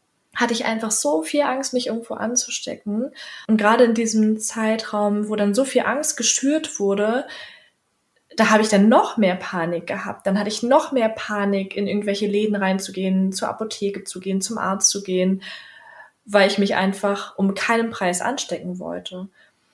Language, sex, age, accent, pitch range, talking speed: German, female, 20-39, German, 200-235 Hz, 170 wpm